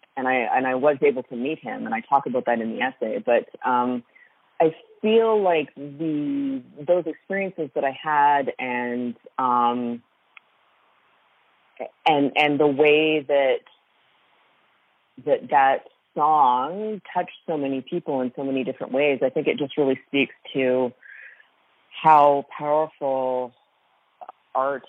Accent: American